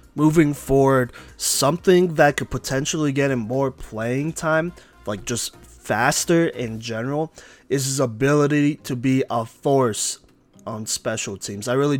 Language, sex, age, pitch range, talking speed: English, male, 20-39, 115-145 Hz, 140 wpm